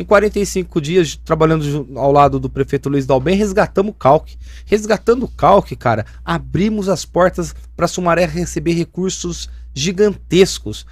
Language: Portuguese